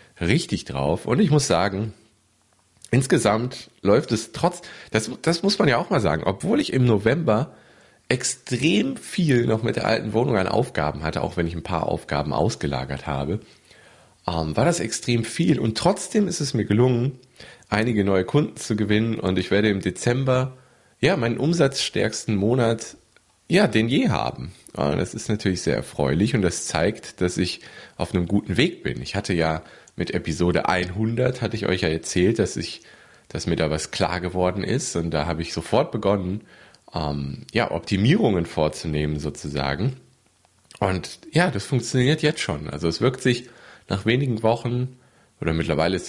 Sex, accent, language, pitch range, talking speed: male, German, German, 85-120 Hz, 170 wpm